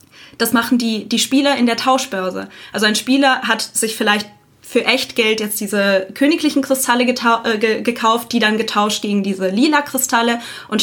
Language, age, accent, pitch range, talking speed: German, 20-39, German, 210-255 Hz, 170 wpm